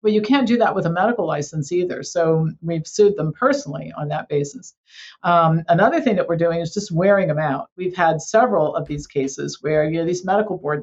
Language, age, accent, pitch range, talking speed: English, 50-69, American, 160-200 Hz, 235 wpm